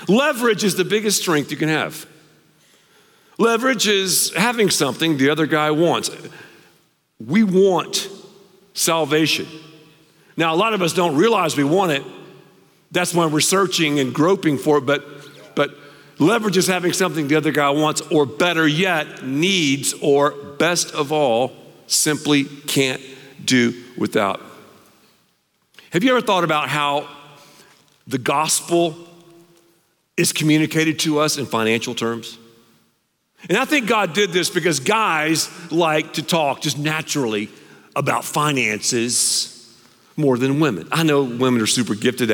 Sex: male